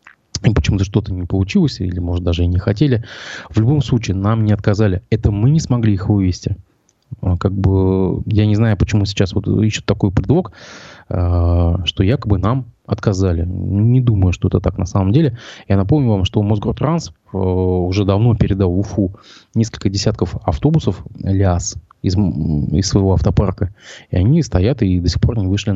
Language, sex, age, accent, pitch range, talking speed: Russian, male, 20-39, native, 95-110 Hz, 165 wpm